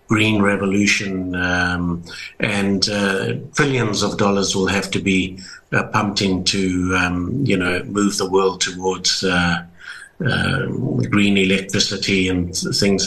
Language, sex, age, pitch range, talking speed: English, male, 60-79, 95-110 Hz, 130 wpm